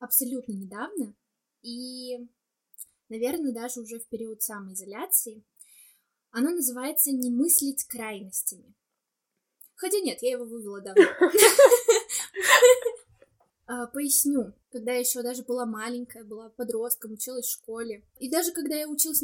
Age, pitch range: 20-39, 230-270 Hz